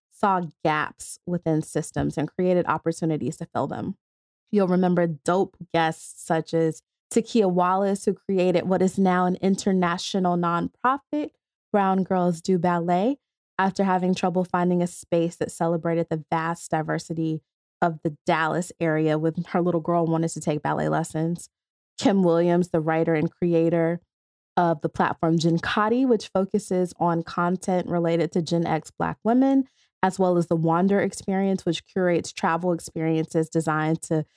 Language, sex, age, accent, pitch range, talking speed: English, female, 20-39, American, 165-200 Hz, 150 wpm